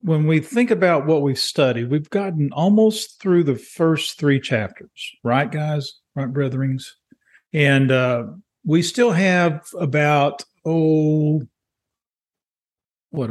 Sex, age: male, 40-59